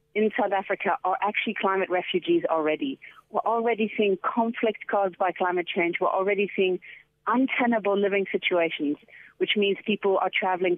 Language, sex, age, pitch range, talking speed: English, female, 40-59, 180-220 Hz, 150 wpm